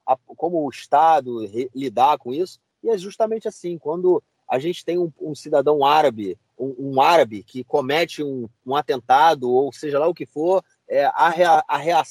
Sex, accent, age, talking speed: male, Brazilian, 30-49, 165 wpm